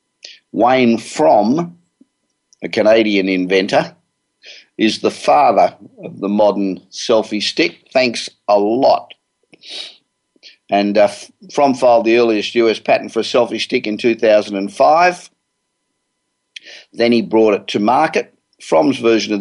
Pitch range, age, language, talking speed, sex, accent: 105-120 Hz, 50-69, English, 120 wpm, male, Australian